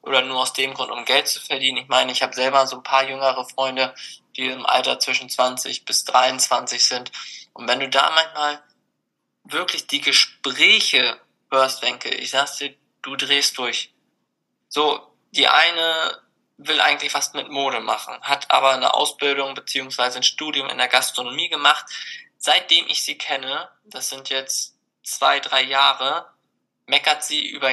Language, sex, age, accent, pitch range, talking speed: German, male, 20-39, German, 130-145 Hz, 165 wpm